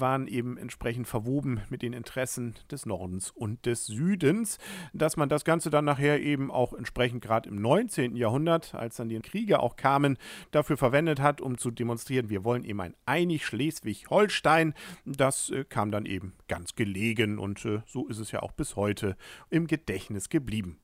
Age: 40-59